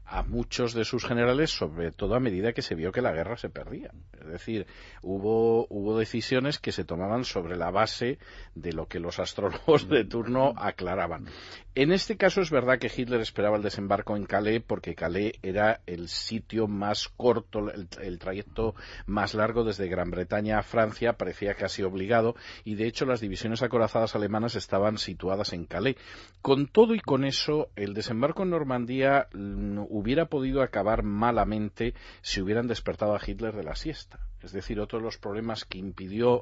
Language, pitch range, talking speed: Spanish, 100-120 Hz, 180 wpm